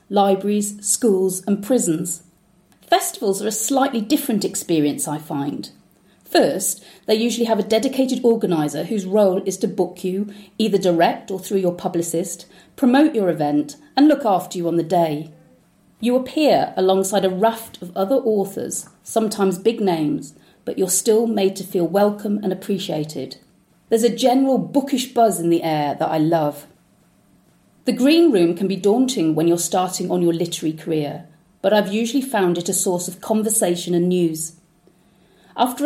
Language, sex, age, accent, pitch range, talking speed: English, female, 40-59, British, 180-240 Hz, 160 wpm